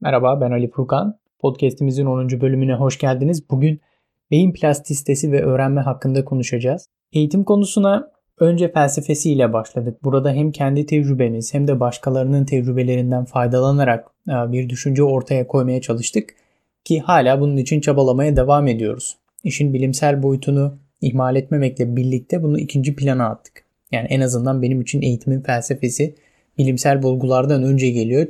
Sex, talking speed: male, 135 wpm